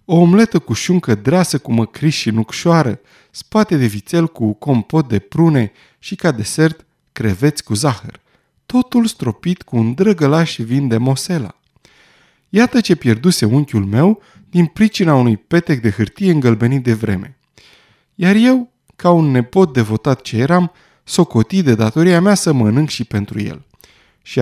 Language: Romanian